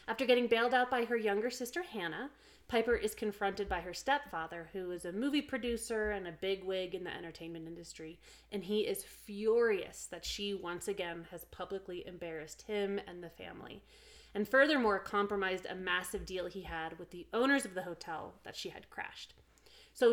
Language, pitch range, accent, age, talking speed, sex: English, 175-225 Hz, American, 30-49, 180 wpm, female